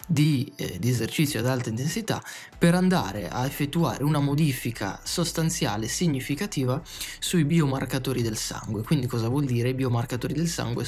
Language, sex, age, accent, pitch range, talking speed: Italian, male, 20-39, native, 120-150 Hz, 150 wpm